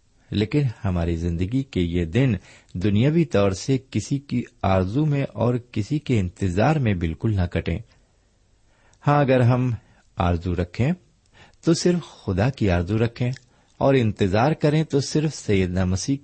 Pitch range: 95-125 Hz